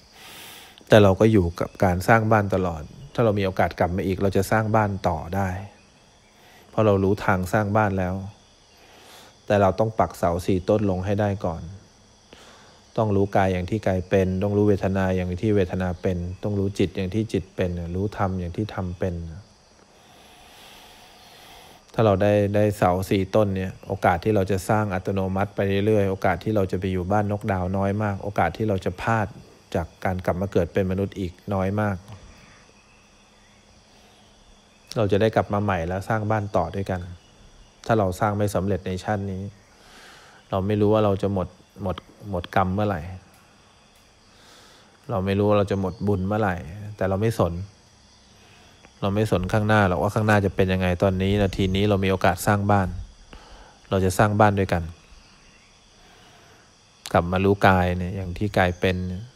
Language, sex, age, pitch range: English, male, 20-39, 95-105 Hz